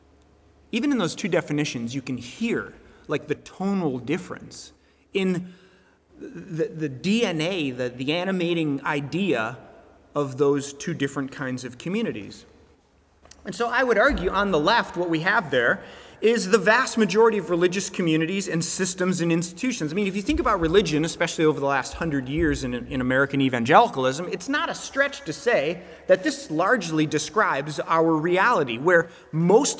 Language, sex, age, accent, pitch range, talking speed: English, male, 30-49, American, 140-215 Hz, 165 wpm